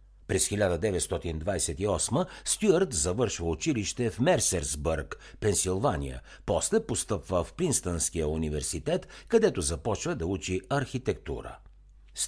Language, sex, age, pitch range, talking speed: Bulgarian, male, 60-79, 80-110 Hz, 95 wpm